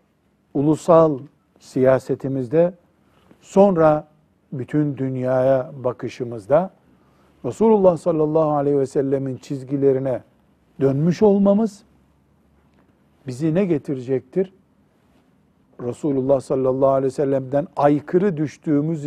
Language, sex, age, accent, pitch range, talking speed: Turkish, male, 60-79, native, 130-170 Hz, 75 wpm